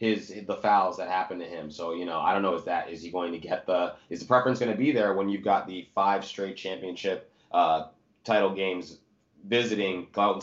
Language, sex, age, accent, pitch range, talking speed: English, male, 20-39, American, 85-105 Hz, 230 wpm